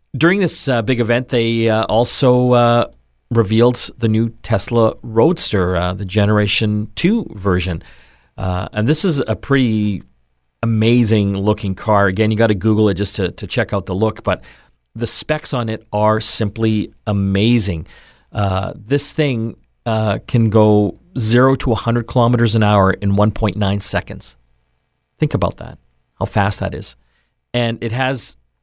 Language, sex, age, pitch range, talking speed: English, male, 40-59, 95-120 Hz, 155 wpm